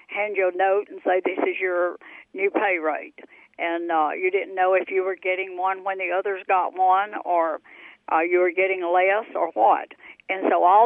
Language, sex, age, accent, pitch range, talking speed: English, female, 60-79, American, 185-230 Hz, 210 wpm